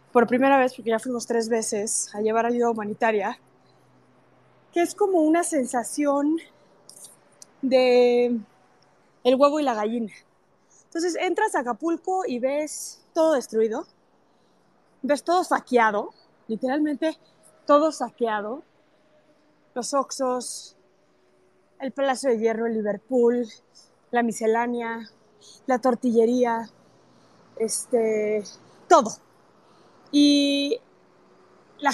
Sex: female